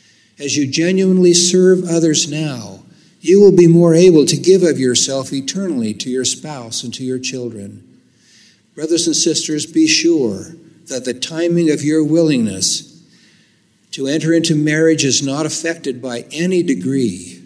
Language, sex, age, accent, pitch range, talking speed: English, male, 60-79, American, 125-160 Hz, 150 wpm